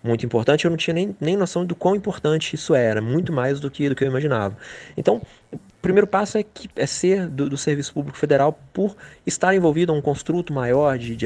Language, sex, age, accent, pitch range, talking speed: Portuguese, male, 20-39, Brazilian, 110-140 Hz, 220 wpm